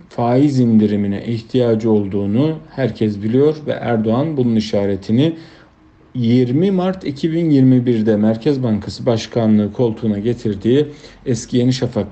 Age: 50-69